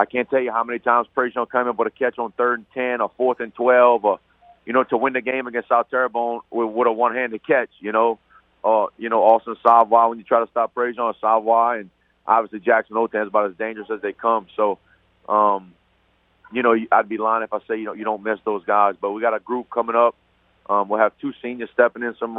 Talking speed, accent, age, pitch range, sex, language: 245 wpm, American, 40-59, 105-120 Hz, male, English